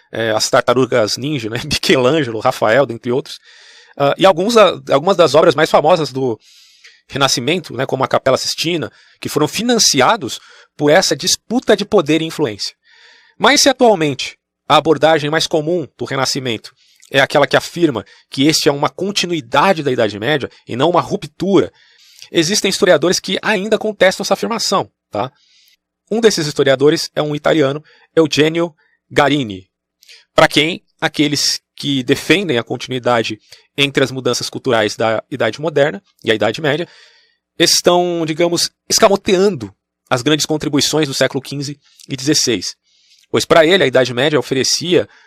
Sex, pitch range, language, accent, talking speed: male, 135-185 Hz, Portuguese, Brazilian, 140 wpm